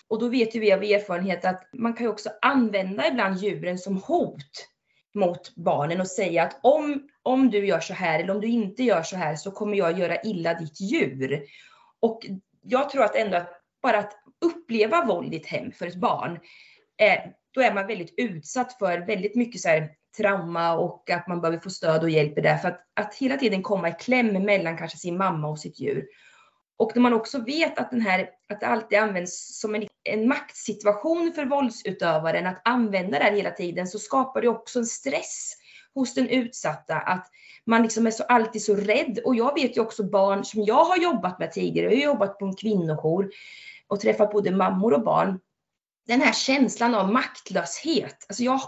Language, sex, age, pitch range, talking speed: Swedish, female, 30-49, 185-250 Hz, 200 wpm